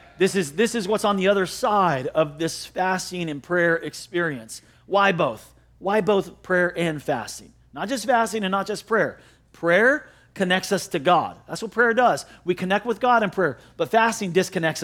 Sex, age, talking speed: male, 40-59, 185 wpm